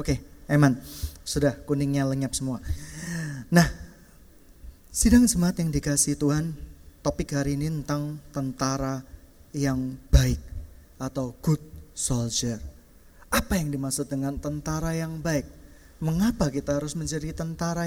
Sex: male